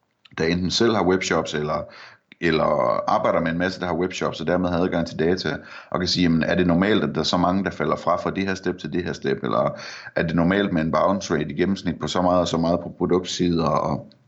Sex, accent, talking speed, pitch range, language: male, native, 255 wpm, 80-95 Hz, Danish